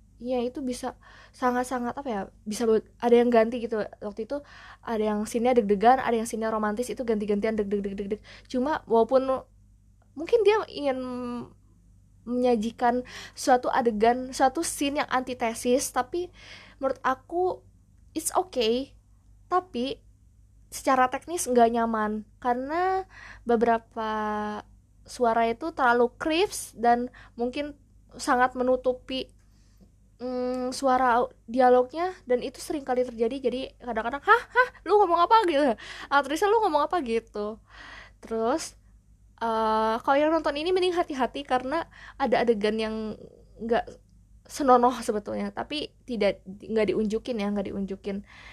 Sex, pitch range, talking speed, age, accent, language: female, 210-260 Hz, 120 wpm, 20-39, native, Indonesian